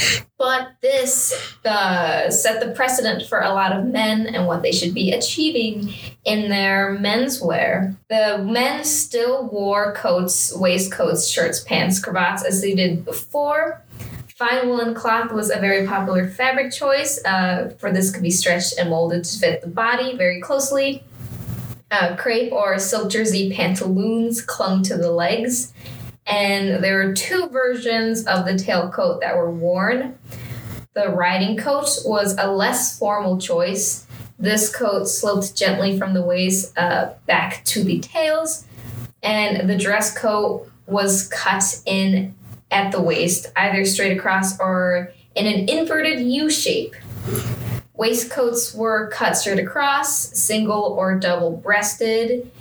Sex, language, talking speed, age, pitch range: female, English, 145 wpm, 10-29, 180-235 Hz